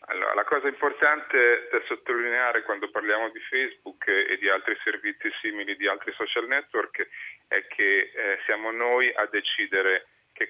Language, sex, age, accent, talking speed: Italian, male, 40-59, native, 150 wpm